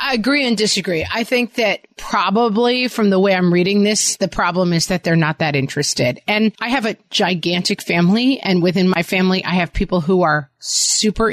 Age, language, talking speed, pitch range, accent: 30-49, English, 200 wpm, 175-215 Hz, American